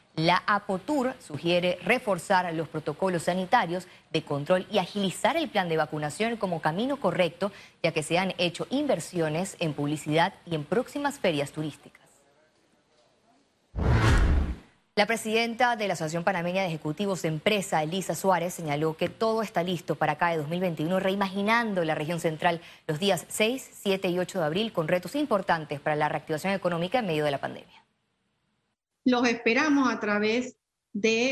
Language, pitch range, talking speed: Spanish, 180-240 Hz, 155 wpm